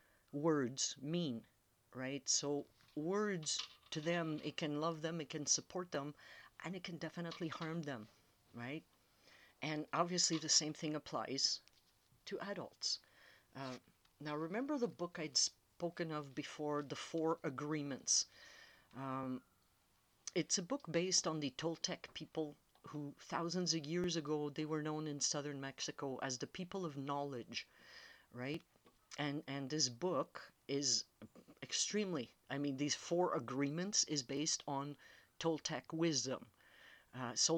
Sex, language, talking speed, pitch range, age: female, English, 135 wpm, 135-170 Hz, 50-69